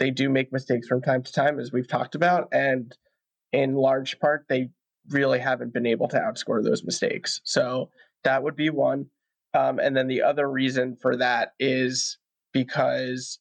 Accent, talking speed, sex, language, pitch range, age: American, 180 wpm, male, English, 130-150 Hz, 20-39